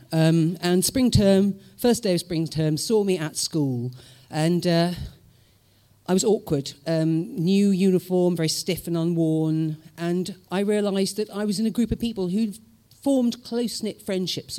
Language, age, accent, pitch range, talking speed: English, 50-69, British, 150-200 Hz, 165 wpm